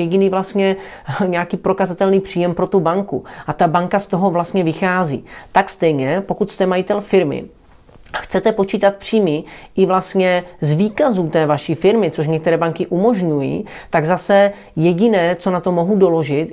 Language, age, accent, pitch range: Czech, 30-49, native, 165-195 Hz